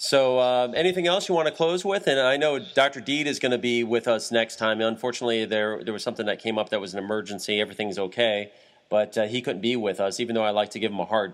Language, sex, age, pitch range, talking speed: English, male, 30-49, 95-120 Hz, 275 wpm